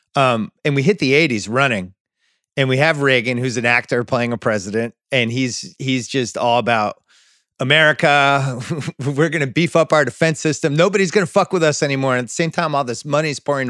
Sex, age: male, 30-49